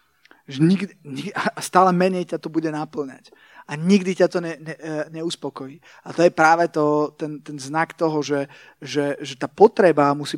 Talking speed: 180 wpm